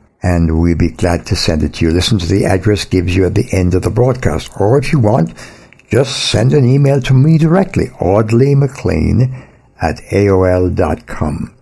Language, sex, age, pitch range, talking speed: English, male, 60-79, 85-115 Hz, 185 wpm